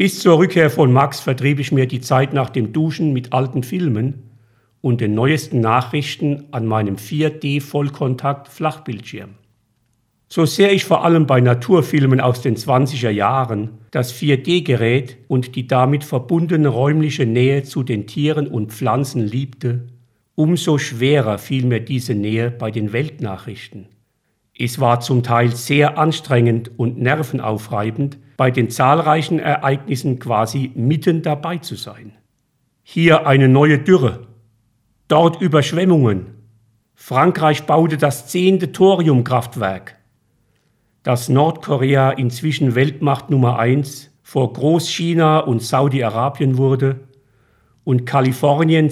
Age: 50-69